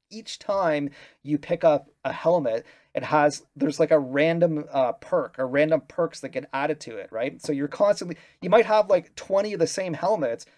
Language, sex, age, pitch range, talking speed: English, male, 30-49, 135-170 Hz, 205 wpm